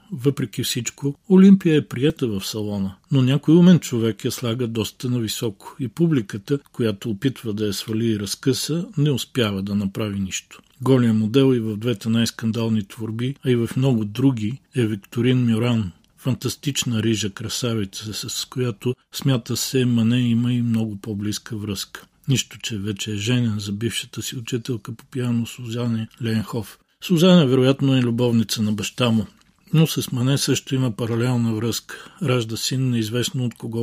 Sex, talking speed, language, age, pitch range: male, 165 wpm, Bulgarian, 50-69, 110-130 Hz